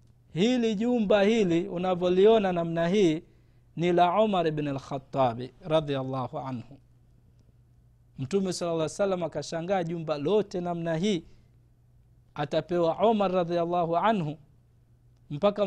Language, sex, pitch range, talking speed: Swahili, male, 130-195 Hz, 105 wpm